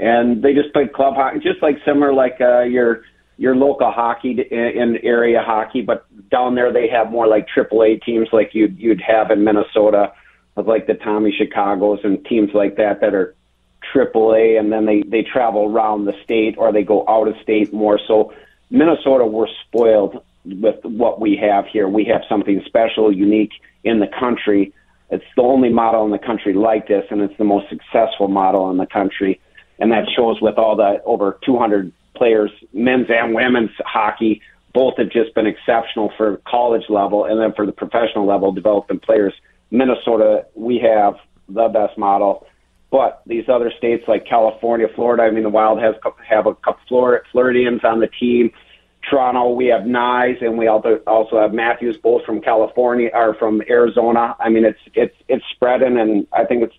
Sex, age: male, 40-59